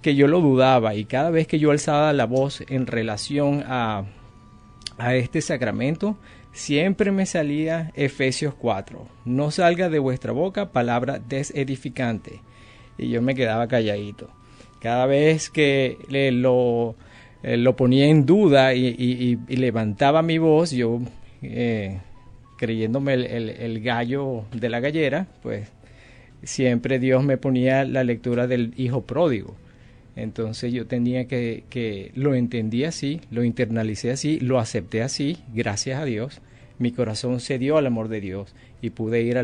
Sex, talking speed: male, 150 wpm